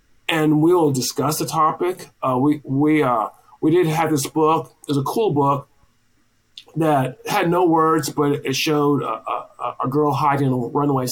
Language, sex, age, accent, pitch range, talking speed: English, male, 40-59, American, 135-165 Hz, 175 wpm